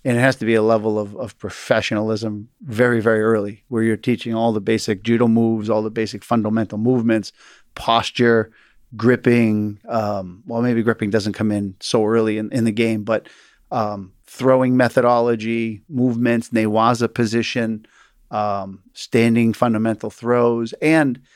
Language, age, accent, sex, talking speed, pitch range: English, 40-59, American, male, 150 wpm, 110-120 Hz